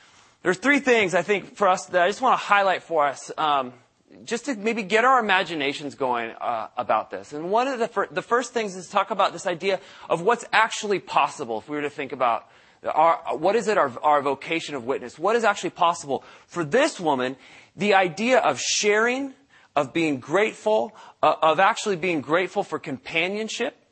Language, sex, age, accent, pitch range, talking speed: English, male, 30-49, American, 140-205 Hz, 200 wpm